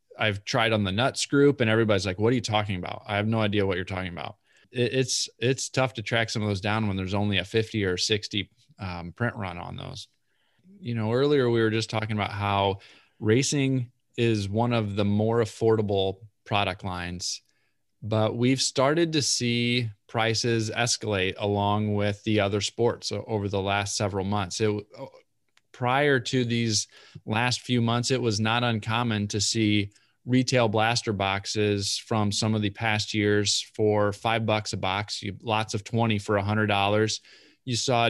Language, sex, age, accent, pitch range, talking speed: English, male, 20-39, American, 105-120 Hz, 180 wpm